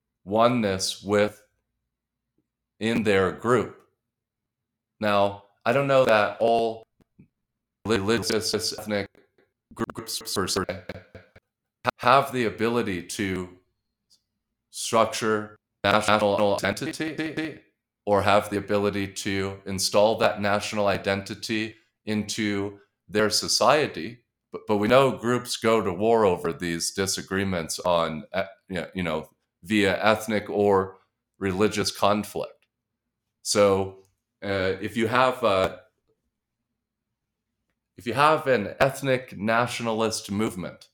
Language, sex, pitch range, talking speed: English, male, 100-115 Hz, 95 wpm